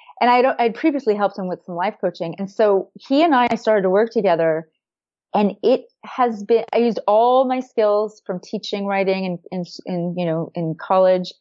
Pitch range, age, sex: 175-225 Hz, 30-49, female